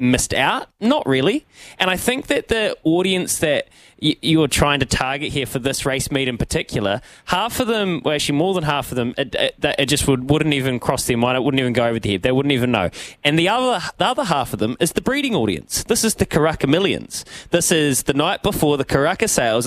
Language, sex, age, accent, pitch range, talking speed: English, male, 20-39, Australian, 125-160 Hz, 240 wpm